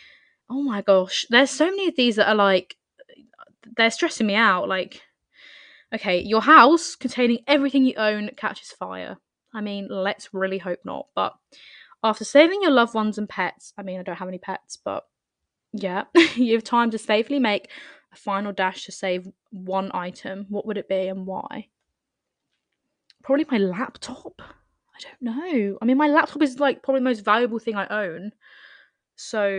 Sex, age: female, 10-29